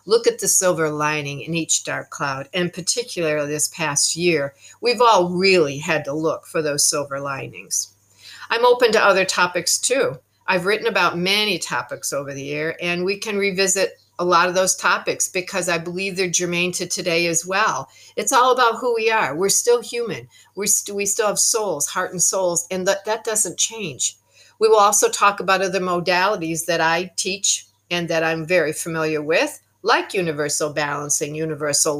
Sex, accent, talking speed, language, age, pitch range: female, American, 180 wpm, English, 50-69, 155-195 Hz